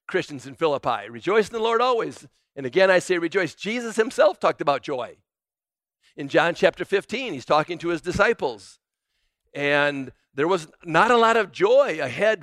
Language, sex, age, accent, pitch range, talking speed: English, male, 50-69, American, 145-190 Hz, 175 wpm